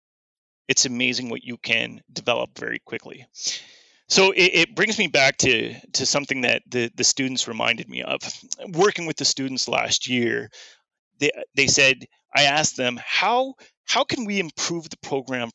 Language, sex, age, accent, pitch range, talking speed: English, male, 30-49, American, 135-195 Hz, 165 wpm